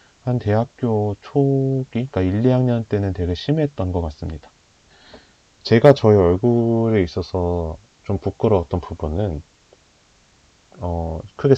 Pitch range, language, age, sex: 85-120 Hz, Korean, 30-49, male